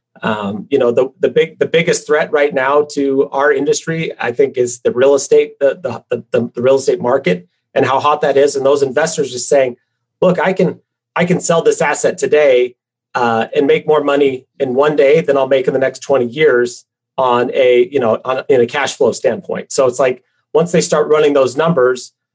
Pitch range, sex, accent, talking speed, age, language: 135-185 Hz, male, American, 220 wpm, 30-49, English